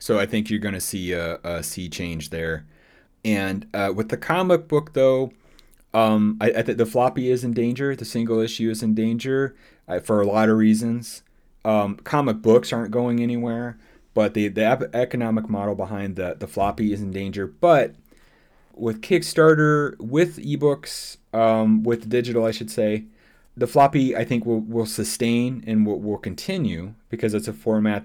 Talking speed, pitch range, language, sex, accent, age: 180 wpm, 95-115 Hz, English, male, American, 30-49